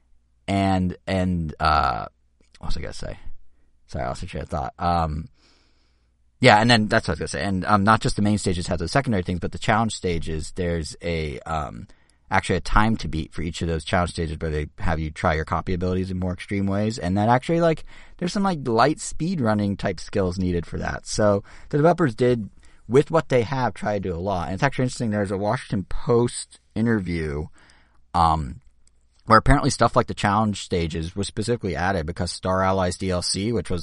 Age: 30-49